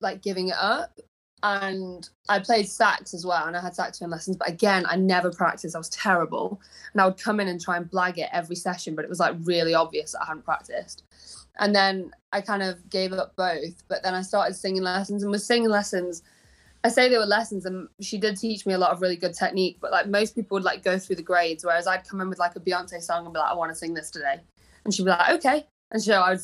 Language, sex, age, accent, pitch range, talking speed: English, female, 20-39, British, 175-205 Hz, 265 wpm